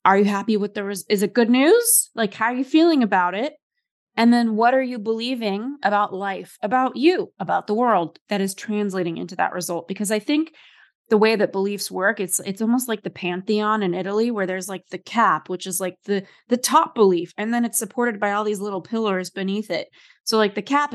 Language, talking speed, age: English, 225 wpm, 20-39